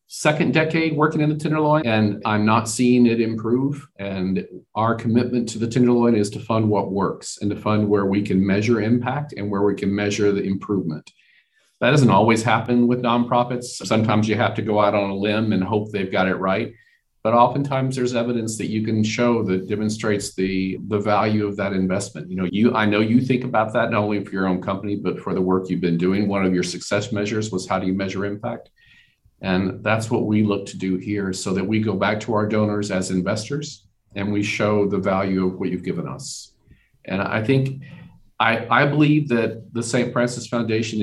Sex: male